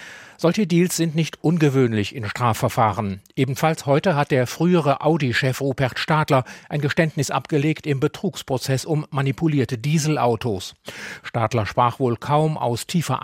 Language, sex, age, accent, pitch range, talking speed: German, male, 40-59, German, 125-155 Hz, 130 wpm